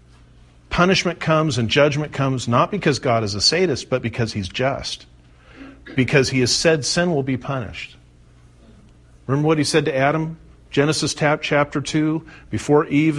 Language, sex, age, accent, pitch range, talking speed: English, male, 50-69, American, 110-155 Hz, 155 wpm